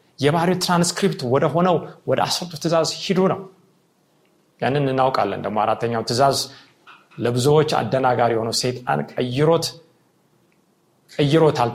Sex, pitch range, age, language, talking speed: male, 130-175 Hz, 30-49, Amharic, 95 wpm